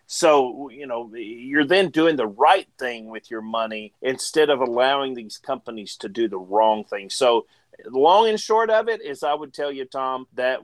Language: English